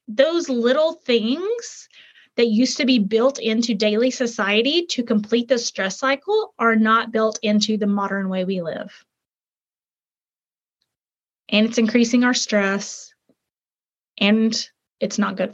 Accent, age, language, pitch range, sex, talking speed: American, 30-49, English, 205-250 Hz, female, 130 wpm